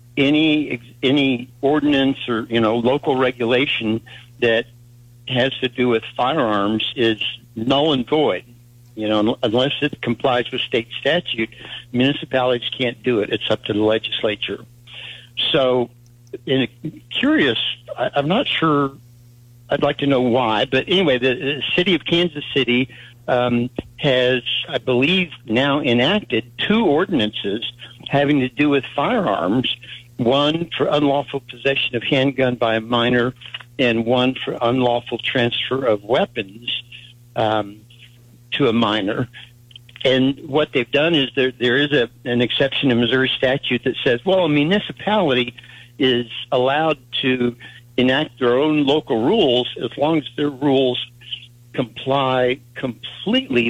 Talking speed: 135 wpm